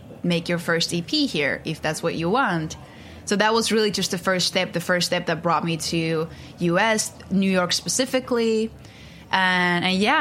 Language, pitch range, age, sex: English, 165-190 Hz, 20-39, female